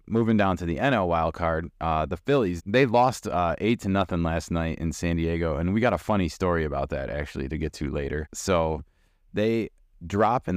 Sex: male